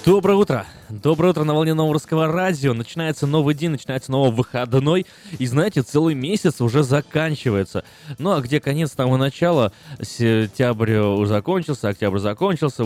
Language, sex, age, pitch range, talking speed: Russian, male, 20-39, 100-140 Hz, 150 wpm